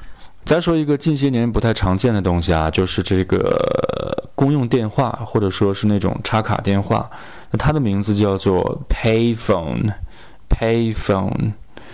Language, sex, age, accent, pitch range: Chinese, male, 20-39, native, 100-120 Hz